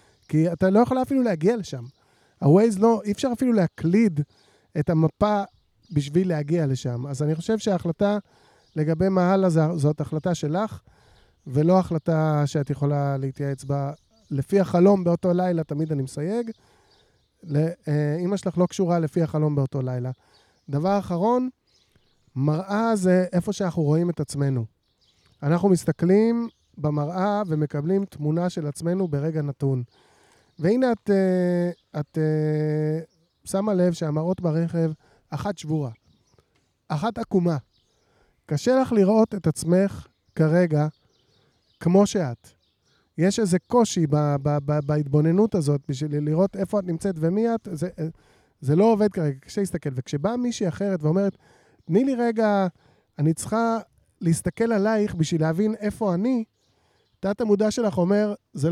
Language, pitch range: Hebrew, 150-200 Hz